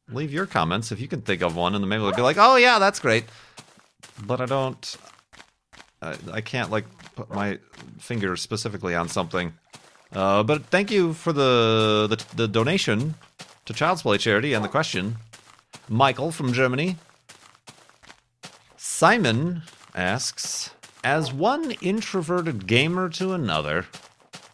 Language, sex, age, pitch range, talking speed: English, male, 40-59, 105-155 Hz, 145 wpm